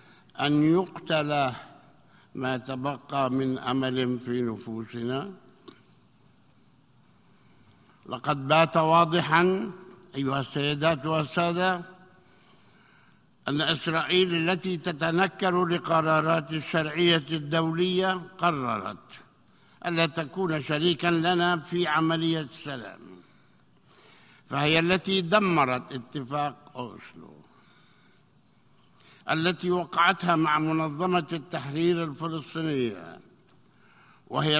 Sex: male